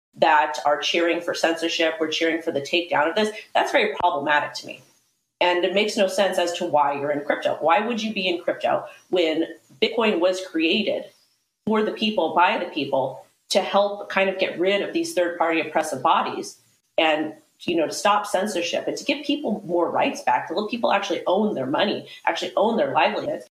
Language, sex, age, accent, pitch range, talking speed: English, female, 30-49, American, 165-220 Hz, 200 wpm